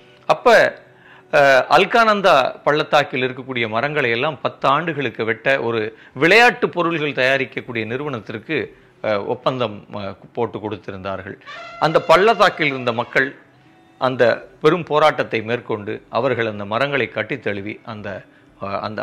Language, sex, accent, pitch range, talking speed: Tamil, male, native, 120-155 Hz, 100 wpm